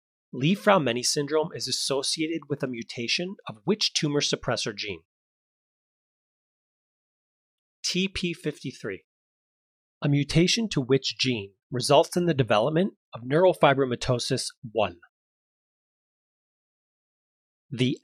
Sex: male